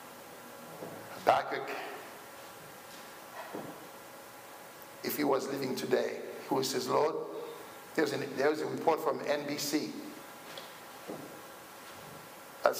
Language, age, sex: English, 60-79, male